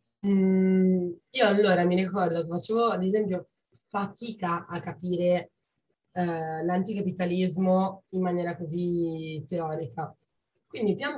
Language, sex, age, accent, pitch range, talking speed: Italian, female, 20-39, native, 160-190 Hz, 105 wpm